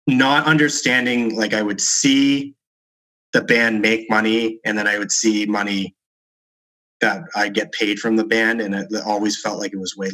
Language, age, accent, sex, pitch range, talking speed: English, 30-49, American, male, 100-115 Hz, 185 wpm